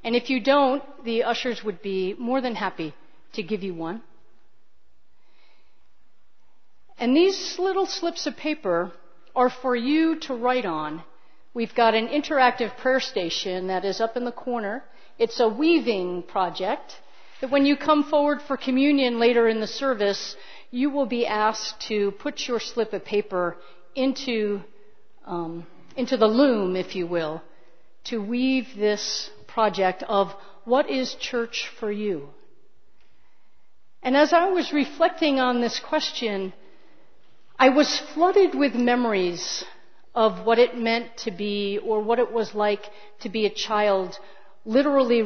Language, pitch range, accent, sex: English, 200-270 Hz, American, female